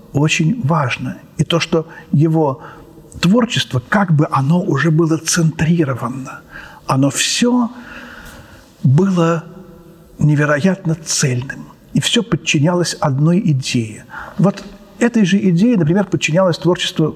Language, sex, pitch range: Russian, male, 145-180 Hz